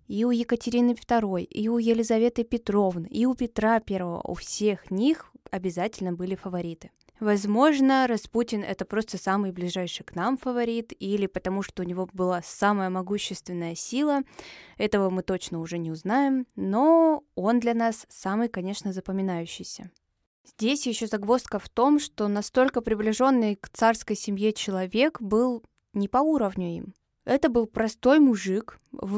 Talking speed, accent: 145 wpm, native